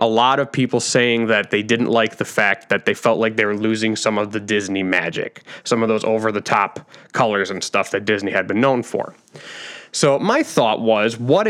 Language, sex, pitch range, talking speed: English, male, 110-130 Hz, 225 wpm